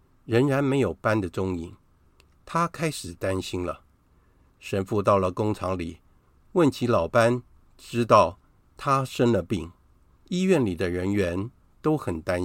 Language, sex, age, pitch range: Chinese, male, 50-69, 90-120 Hz